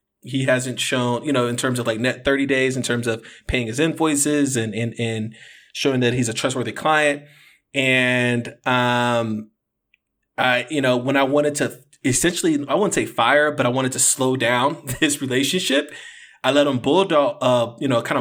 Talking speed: 190 wpm